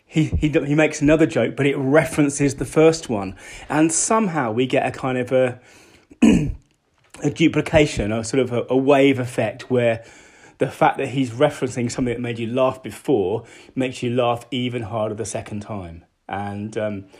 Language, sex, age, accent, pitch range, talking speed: English, male, 30-49, British, 110-140 Hz, 180 wpm